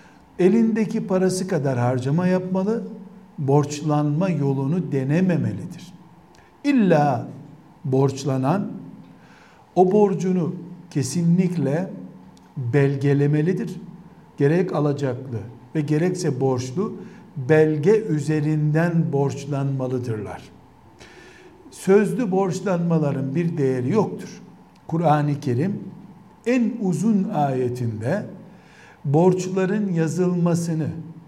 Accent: native